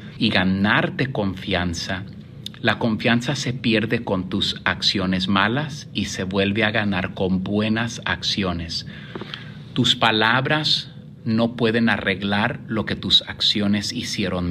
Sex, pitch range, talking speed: male, 95-135 Hz, 120 wpm